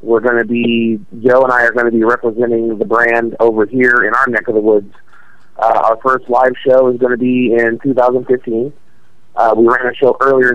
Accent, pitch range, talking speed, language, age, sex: American, 110-125 Hz, 220 wpm, English, 40-59, male